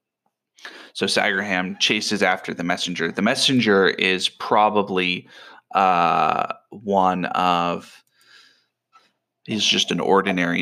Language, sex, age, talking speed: English, male, 20-39, 95 wpm